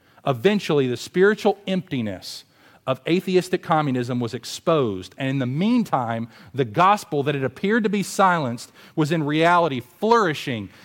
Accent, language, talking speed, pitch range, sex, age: American, English, 140 wpm, 125-175 Hz, male, 40-59